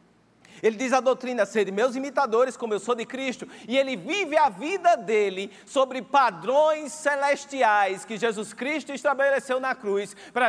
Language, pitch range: Portuguese, 215-255 Hz